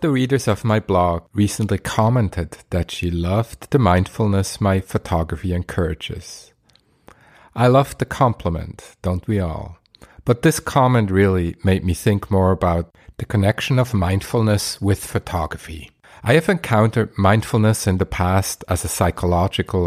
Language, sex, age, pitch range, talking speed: English, male, 50-69, 90-120 Hz, 140 wpm